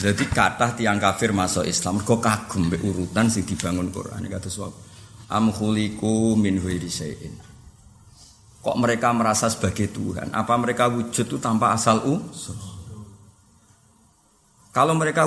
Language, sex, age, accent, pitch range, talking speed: Indonesian, male, 50-69, native, 105-150 Hz, 120 wpm